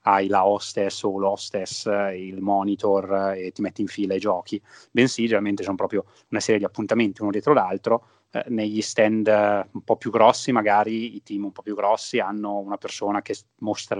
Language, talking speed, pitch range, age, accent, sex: Italian, 190 wpm, 95-110 Hz, 30-49, native, male